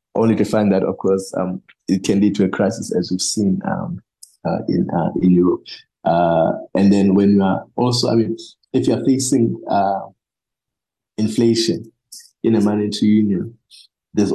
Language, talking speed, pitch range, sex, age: English, 175 wpm, 95-115 Hz, male, 20-39